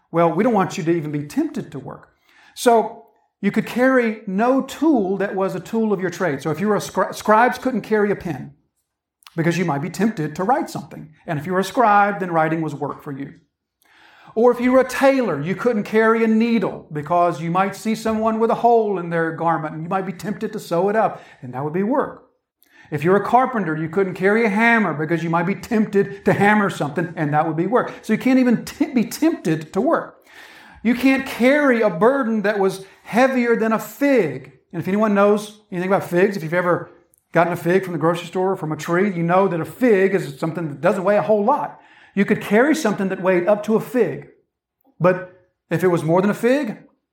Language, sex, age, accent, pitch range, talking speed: English, male, 50-69, American, 175-225 Hz, 235 wpm